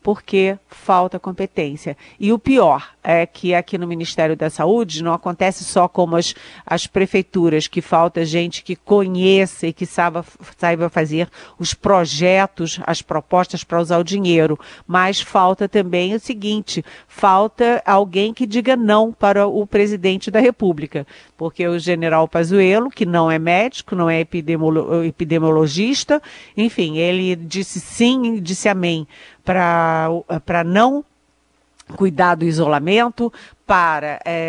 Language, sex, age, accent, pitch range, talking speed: Portuguese, female, 50-69, Brazilian, 170-215 Hz, 130 wpm